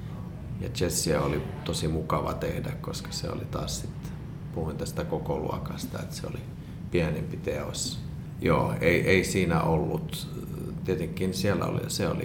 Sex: male